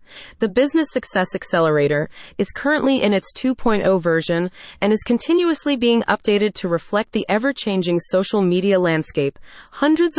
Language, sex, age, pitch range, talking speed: English, female, 30-49, 170-240 Hz, 135 wpm